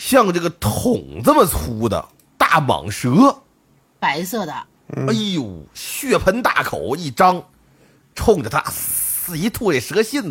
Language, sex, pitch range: Chinese, male, 130-200 Hz